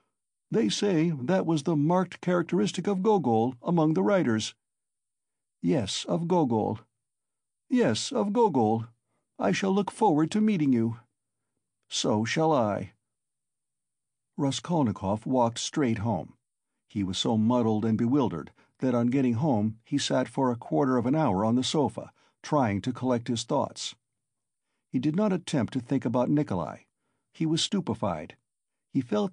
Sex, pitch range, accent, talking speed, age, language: male, 115-160 Hz, American, 145 wpm, 60-79, English